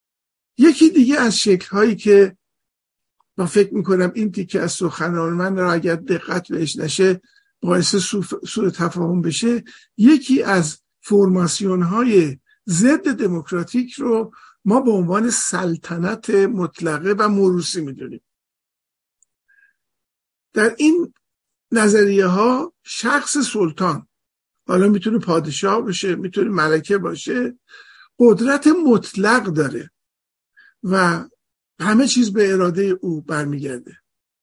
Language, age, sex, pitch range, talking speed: Persian, 50-69, male, 180-235 Hz, 105 wpm